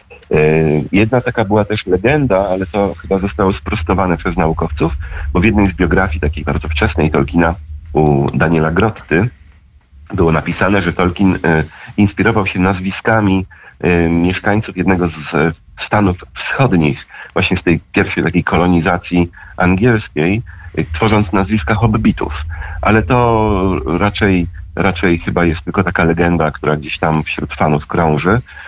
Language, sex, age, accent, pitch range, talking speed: Polish, male, 40-59, native, 80-100 Hz, 130 wpm